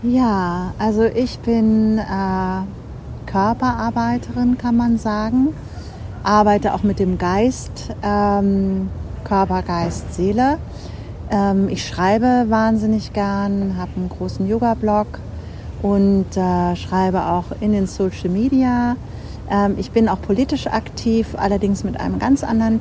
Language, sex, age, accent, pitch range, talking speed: German, female, 40-59, German, 190-220 Hz, 120 wpm